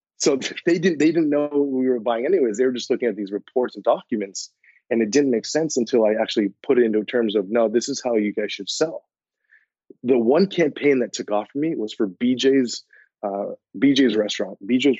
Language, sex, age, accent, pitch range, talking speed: English, male, 30-49, American, 110-140 Hz, 220 wpm